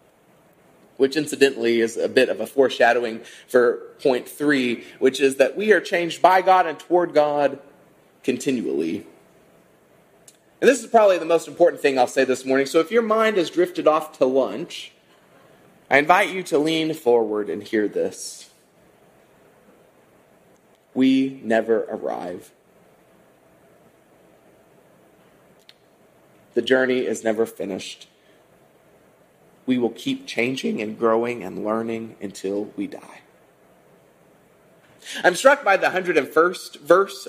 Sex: male